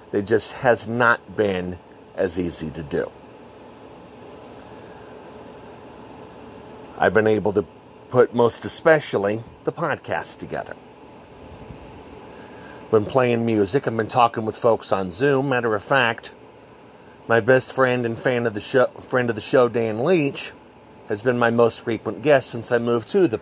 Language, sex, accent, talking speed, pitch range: English, male, American, 145 wpm, 105-130 Hz